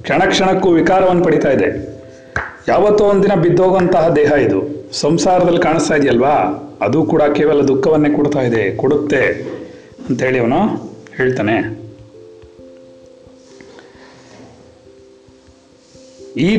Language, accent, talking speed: Kannada, native, 85 wpm